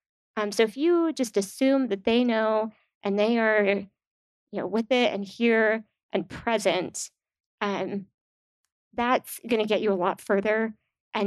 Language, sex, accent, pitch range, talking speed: English, female, American, 195-225 Hz, 155 wpm